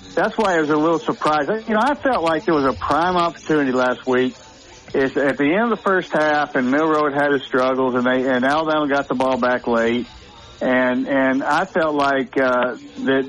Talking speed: 225 wpm